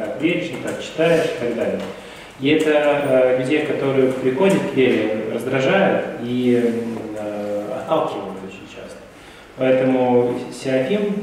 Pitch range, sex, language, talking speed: 105-135 Hz, male, Russian, 125 wpm